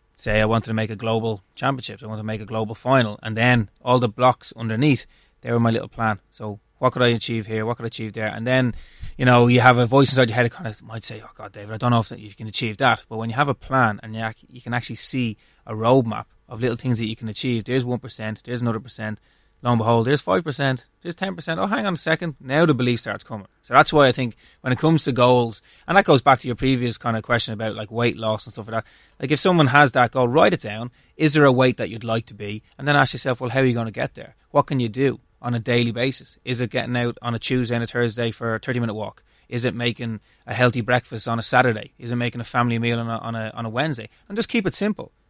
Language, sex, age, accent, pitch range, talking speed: English, male, 20-39, Irish, 110-130 Hz, 280 wpm